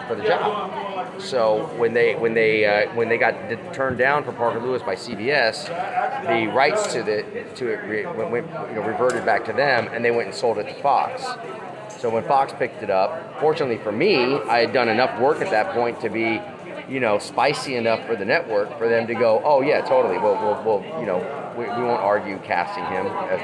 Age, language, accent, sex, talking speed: 30-49, English, American, male, 225 wpm